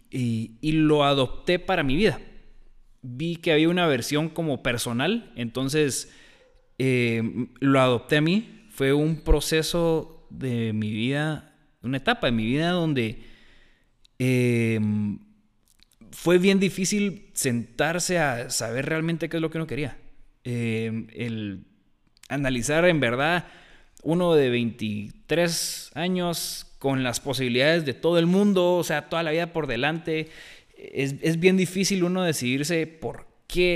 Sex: male